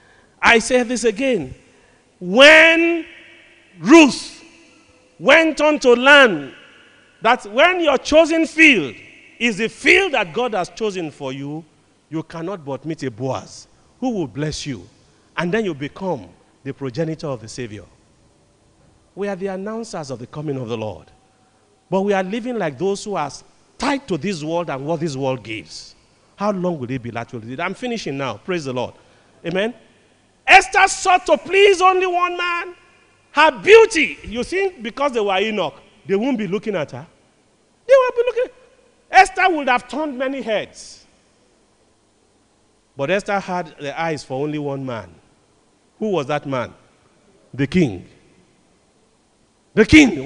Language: English